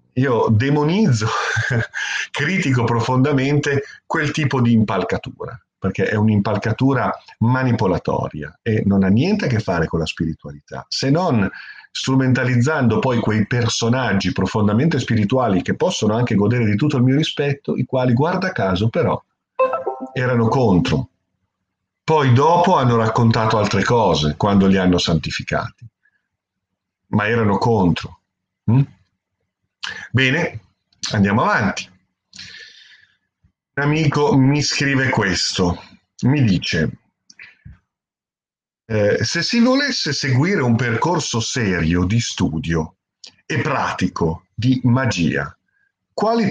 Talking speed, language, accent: 110 wpm, Italian, native